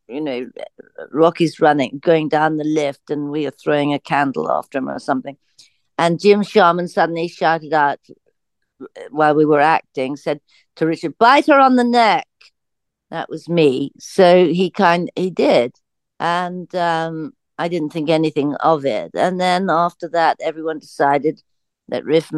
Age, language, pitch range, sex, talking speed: 60-79, English, 150-185 Hz, female, 160 wpm